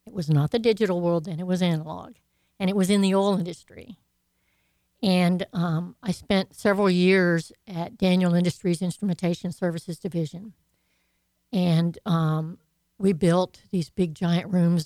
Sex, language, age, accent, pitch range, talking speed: female, English, 60-79, American, 165-195 Hz, 150 wpm